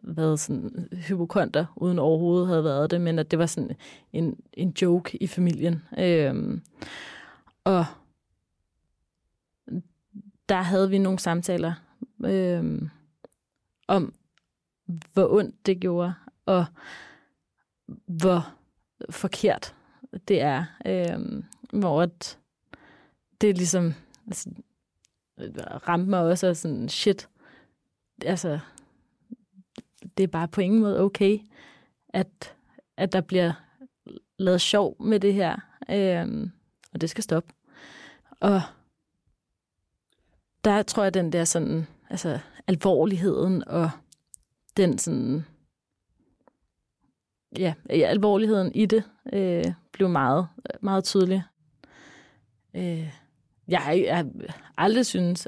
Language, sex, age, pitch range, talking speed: Danish, female, 30-49, 165-195 Hz, 105 wpm